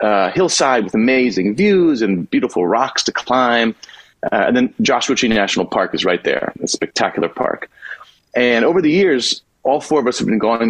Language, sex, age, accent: English, male, 30-49, American